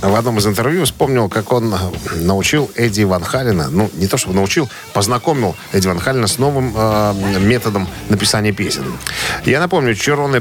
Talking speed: 165 wpm